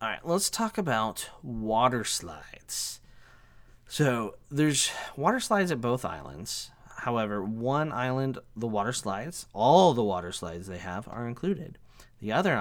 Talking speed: 150 wpm